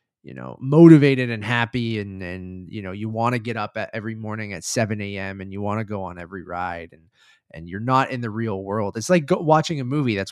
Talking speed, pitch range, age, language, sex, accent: 245 wpm, 95-125 Hz, 20-39, English, male, American